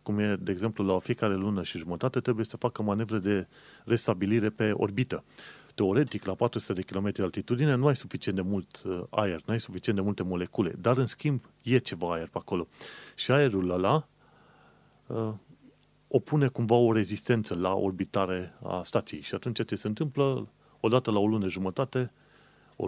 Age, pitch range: 30-49, 95-115 Hz